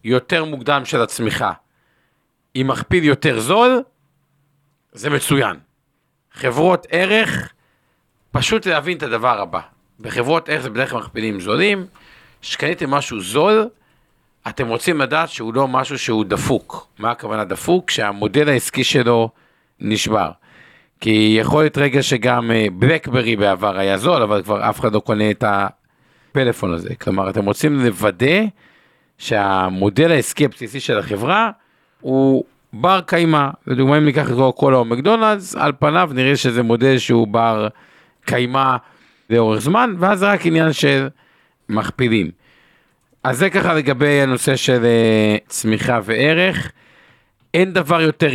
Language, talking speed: Hebrew, 130 wpm